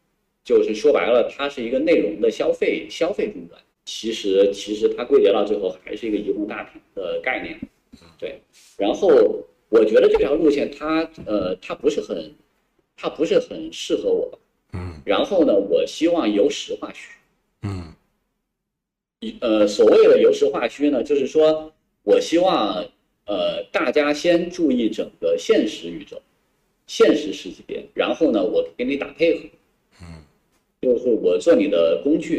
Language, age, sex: Chinese, 50-69, male